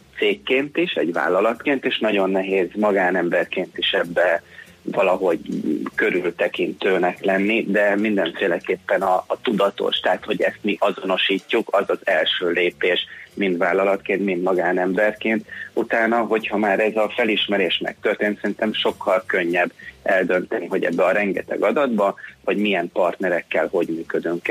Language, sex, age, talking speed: Hungarian, male, 30-49, 125 wpm